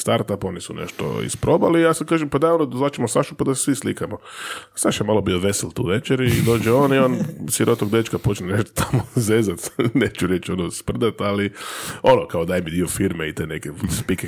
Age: 20-39